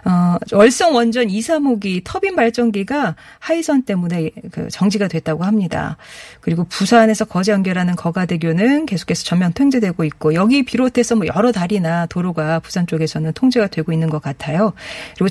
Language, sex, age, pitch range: Korean, female, 40-59, 170-230 Hz